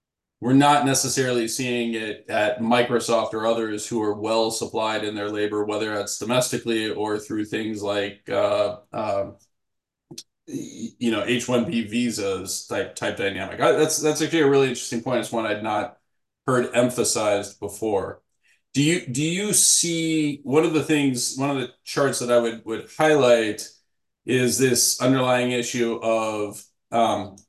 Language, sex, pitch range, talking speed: English, male, 110-135 Hz, 160 wpm